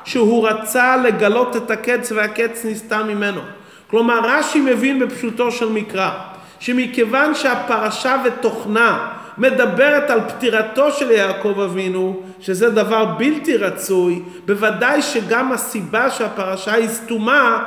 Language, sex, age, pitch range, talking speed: Hebrew, male, 40-59, 200-245 Hz, 110 wpm